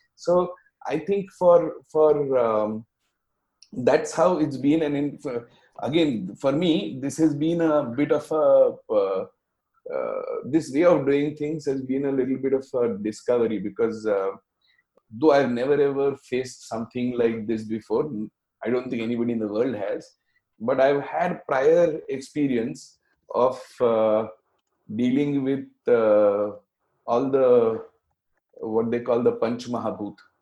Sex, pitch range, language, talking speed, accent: male, 110-150 Hz, English, 150 wpm, Indian